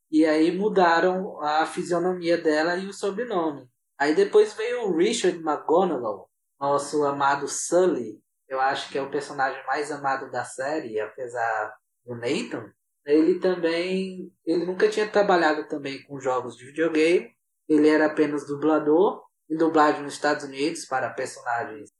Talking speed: 145 wpm